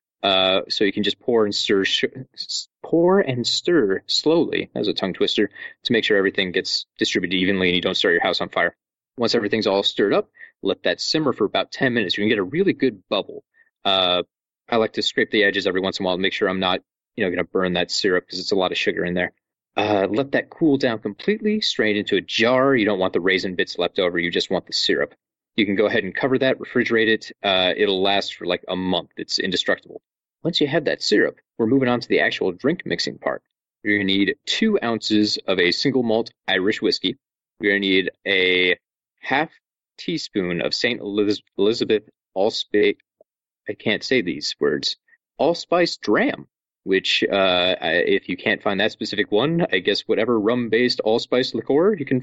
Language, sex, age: English, male, 30-49